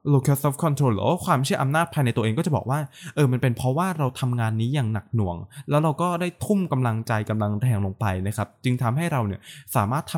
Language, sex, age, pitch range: Thai, male, 20-39, 115-165 Hz